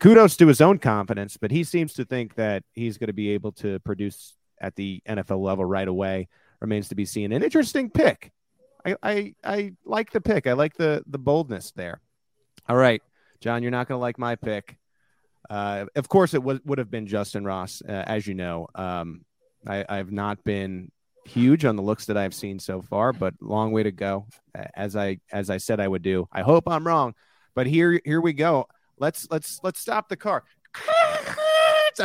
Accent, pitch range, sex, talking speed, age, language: American, 105-165 Hz, male, 205 wpm, 30-49, English